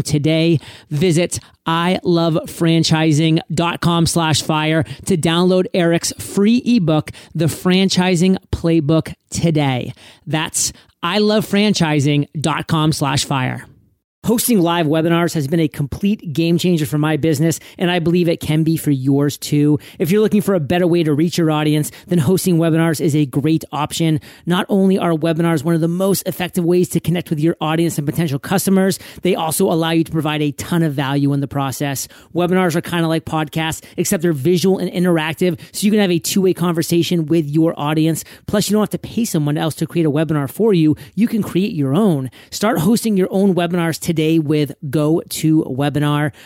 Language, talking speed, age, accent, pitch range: English, 175 wpm, 30-49, American, 155-175 Hz